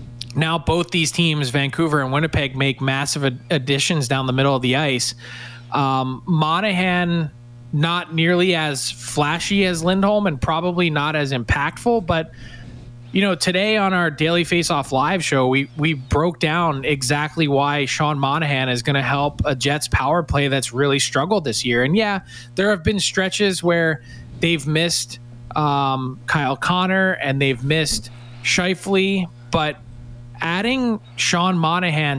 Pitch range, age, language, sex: 130-175 Hz, 20-39, English, male